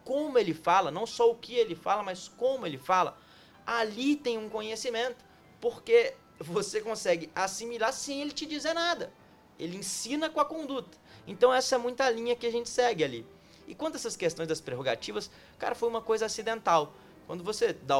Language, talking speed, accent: Portuguese, 185 wpm, Brazilian